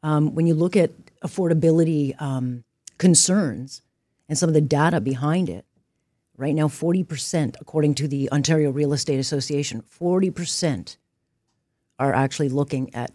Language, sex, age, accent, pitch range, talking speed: English, female, 40-59, American, 145-180 Hz, 135 wpm